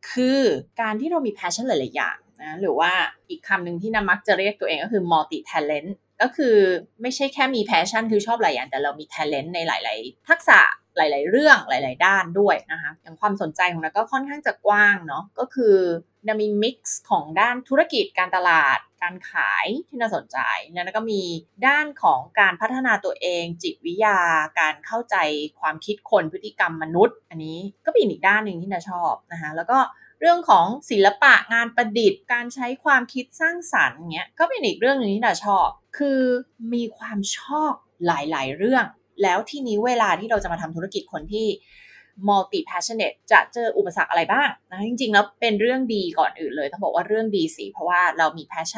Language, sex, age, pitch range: Thai, female, 20-39, 175-250 Hz